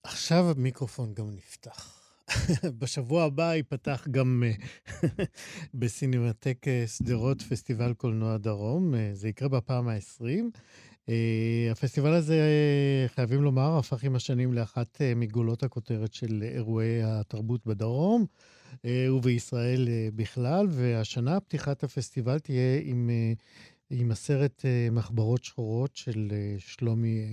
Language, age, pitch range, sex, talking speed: Hebrew, 50-69, 115-135 Hz, male, 95 wpm